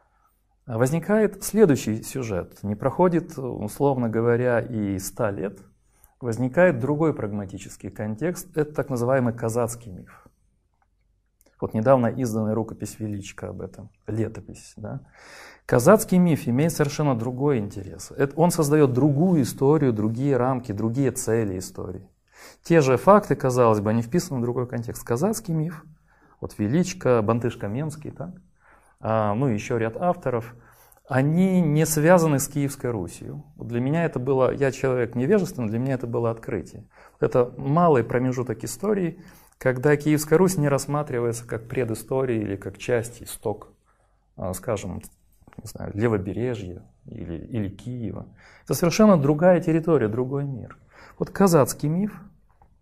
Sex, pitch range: male, 110-150 Hz